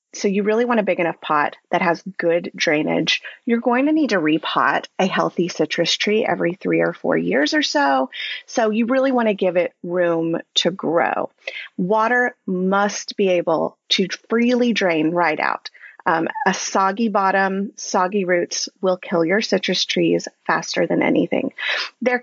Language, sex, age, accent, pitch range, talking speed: English, female, 30-49, American, 175-245 Hz, 170 wpm